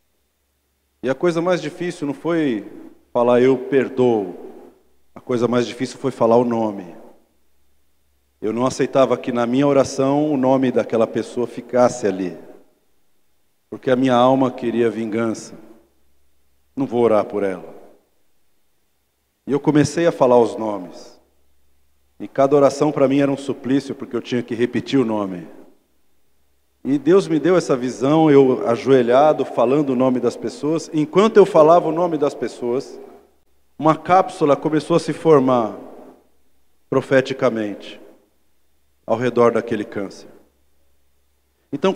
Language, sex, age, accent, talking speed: Portuguese, male, 50-69, Brazilian, 135 wpm